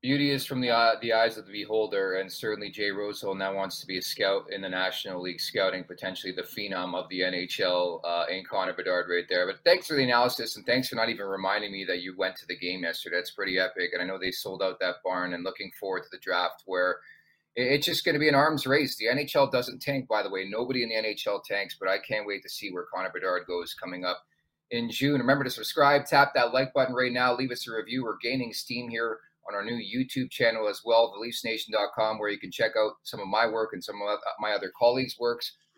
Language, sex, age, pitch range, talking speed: English, male, 30-49, 105-135 Hz, 250 wpm